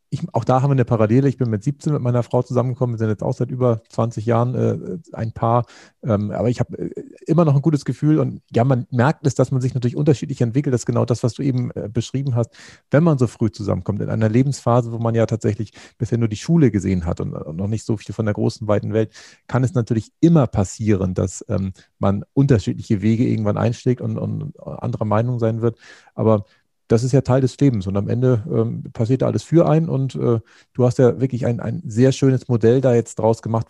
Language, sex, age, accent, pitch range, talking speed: German, male, 40-59, German, 110-135 Hz, 235 wpm